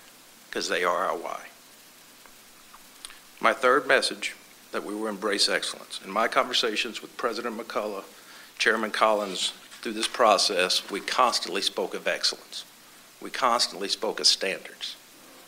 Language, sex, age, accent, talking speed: English, male, 60-79, American, 130 wpm